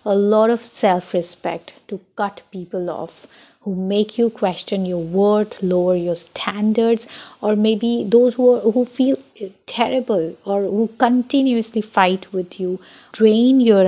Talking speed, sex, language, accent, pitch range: 145 wpm, female, English, Indian, 190-235 Hz